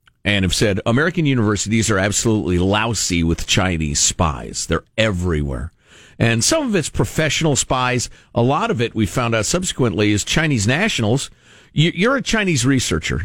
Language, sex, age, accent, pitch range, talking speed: English, male, 50-69, American, 100-155 Hz, 155 wpm